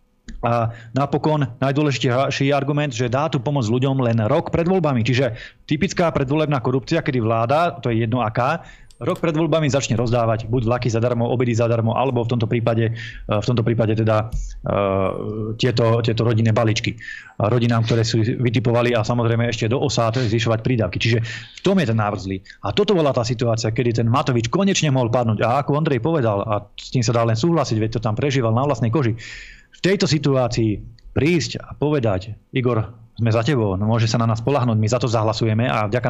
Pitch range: 115-145 Hz